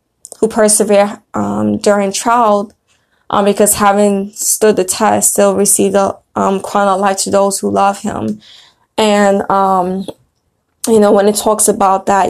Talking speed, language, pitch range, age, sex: 160 wpm, English, 195-210 Hz, 20-39, female